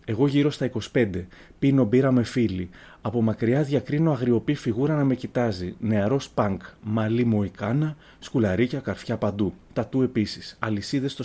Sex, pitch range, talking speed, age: male, 105-140 Hz, 150 wpm, 30-49